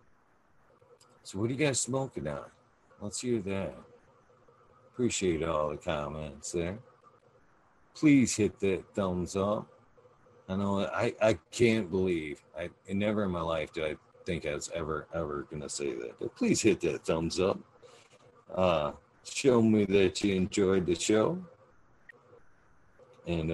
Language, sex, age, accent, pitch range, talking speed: English, male, 50-69, American, 95-140 Hz, 145 wpm